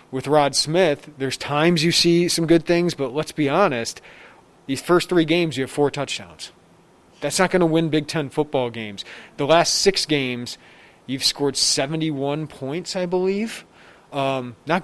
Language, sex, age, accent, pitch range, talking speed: English, male, 30-49, American, 130-165 Hz, 175 wpm